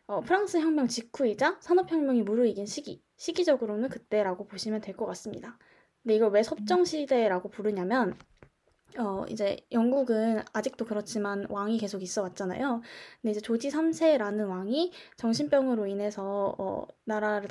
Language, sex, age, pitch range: Korean, female, 20-39, 210-265 Hz